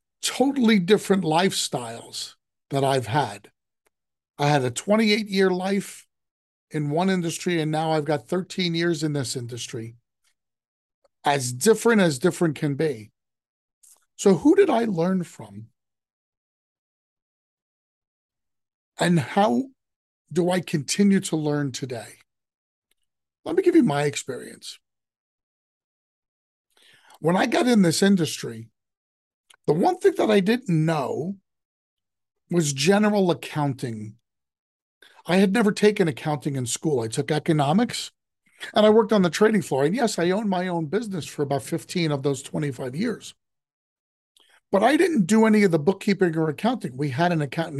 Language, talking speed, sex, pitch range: English, 140 wpm, male, 145-200 Hz